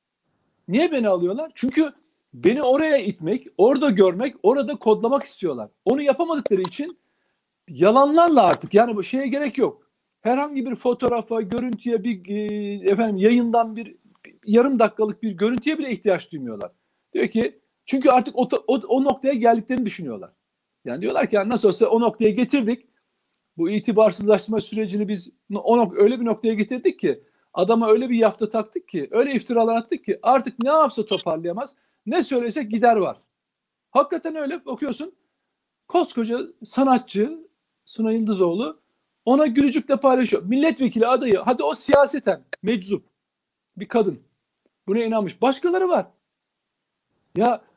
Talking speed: 135 wpm